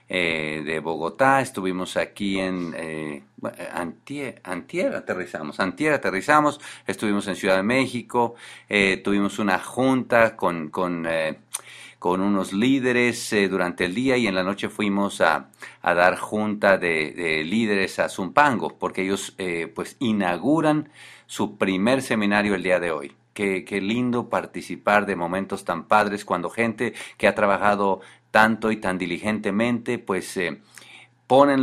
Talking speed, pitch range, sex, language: 145 wpm, 95-120 Hz, male, English